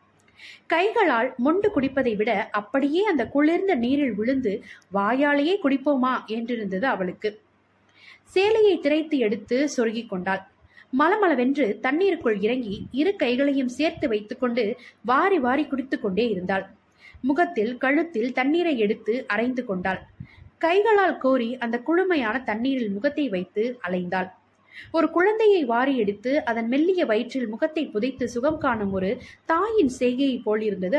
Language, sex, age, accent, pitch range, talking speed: Tamil, female, 20-39, native, 215-300 Hz, 110 wpm